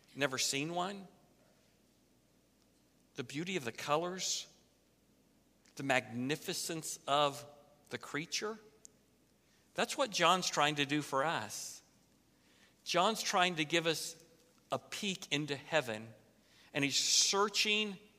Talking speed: 110 wpm